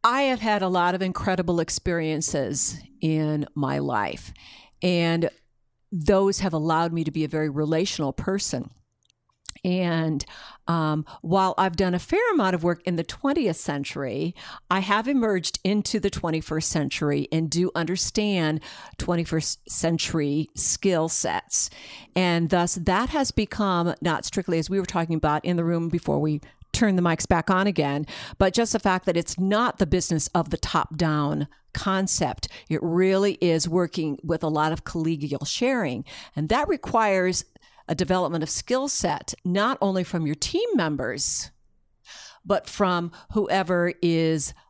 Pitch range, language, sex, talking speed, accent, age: 160-195 Hz, English, female, 155 wpm, American, 50-69